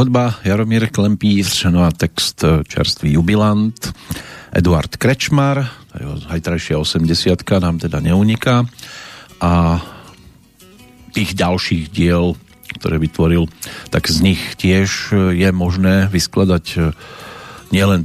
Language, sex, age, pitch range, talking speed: Slovak, male, 50-69, 85-105 Hz, 95 wpm